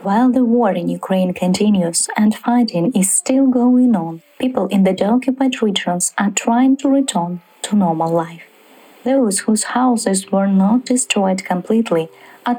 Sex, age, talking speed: female, 20-39, 155 wpm